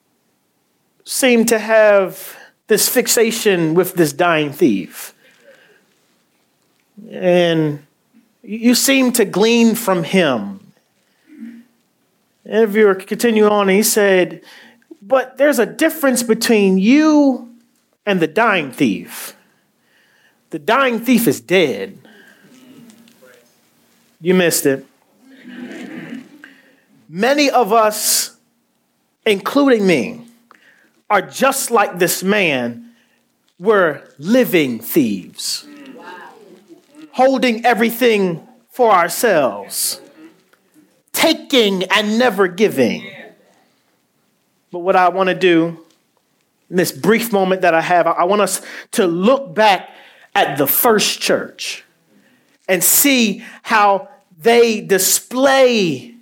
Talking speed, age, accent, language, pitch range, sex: 95 wpm, 40-59, American, English, 190-255 Hz, male